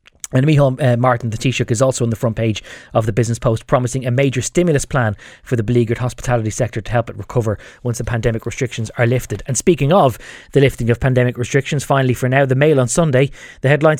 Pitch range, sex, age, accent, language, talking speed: 120-145 Hz, male, 20-39, Irish, English, 225 wpm